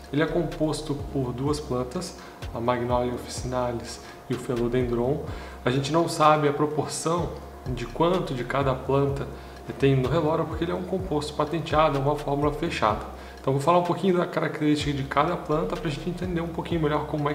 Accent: Brazilian